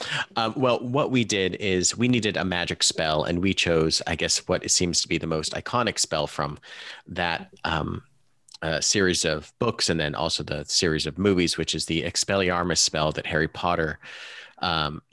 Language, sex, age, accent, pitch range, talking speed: English, male, 30-49, American, 80-100 Hz, 190 wpm